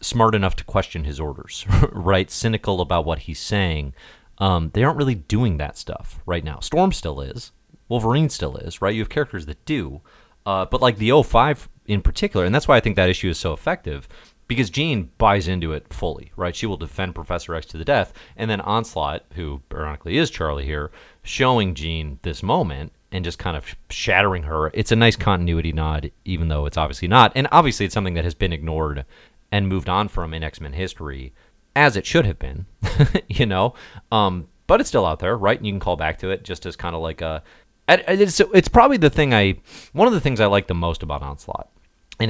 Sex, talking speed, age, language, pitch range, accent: male, 215 wpm, 30-49, English, 80-115 Hz, American